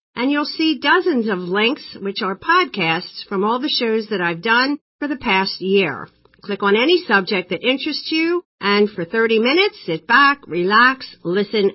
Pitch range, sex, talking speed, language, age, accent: 185-260 Hz, female, 180 wpm, English, 50-69, American